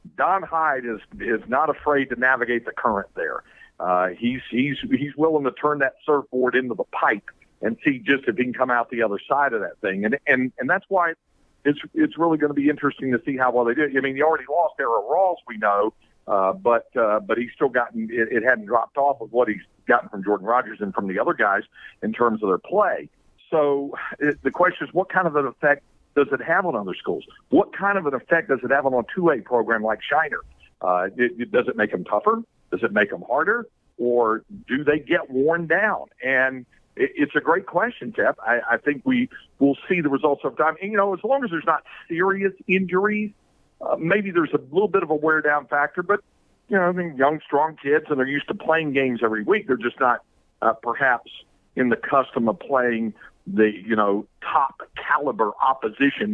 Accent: American